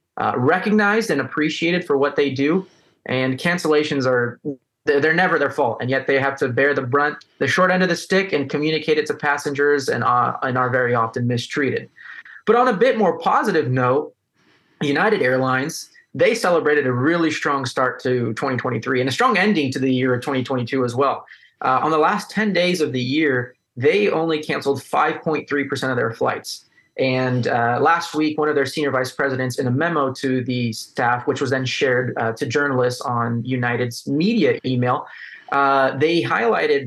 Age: 20-39